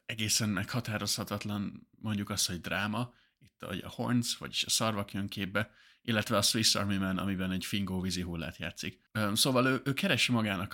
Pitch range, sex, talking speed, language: 90-115 Hz, male, 170 wpm, Hungarian